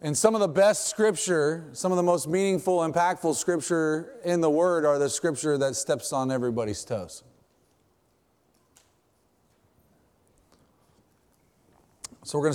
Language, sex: English, male